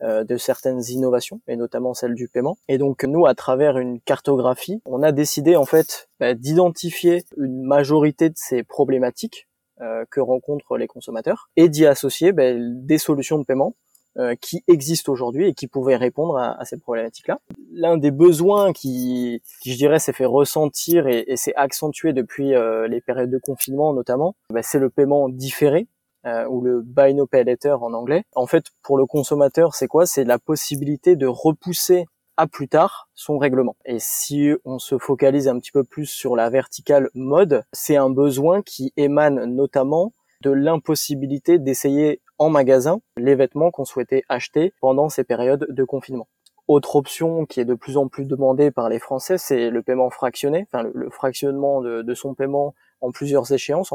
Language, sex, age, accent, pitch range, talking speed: French, male, 20-39, French, 130-155 Hz, 175 wpm